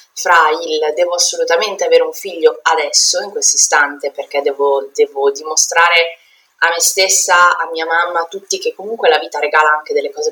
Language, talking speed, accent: Italian, 180 wpm, native